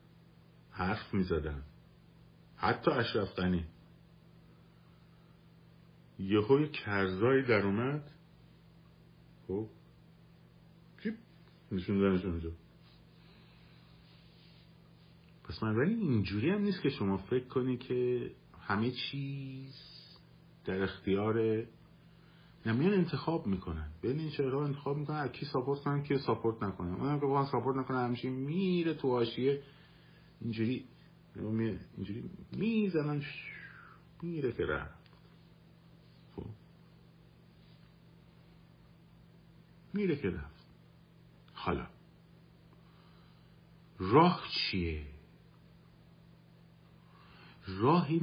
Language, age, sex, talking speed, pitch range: Persian, 50-69, male, 75 wpm, 95-160 Hz